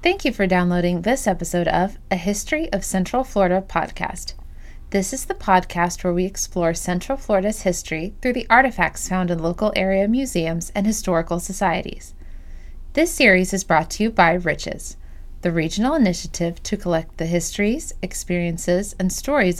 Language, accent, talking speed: English, American, 160 wpm